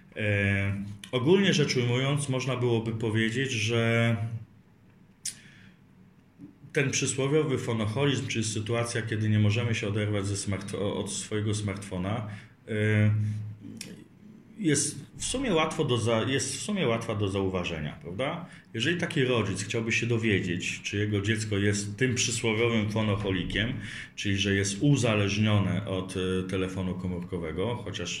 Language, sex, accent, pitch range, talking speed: Polish, male, native, 95-125 Hz, 115 wpm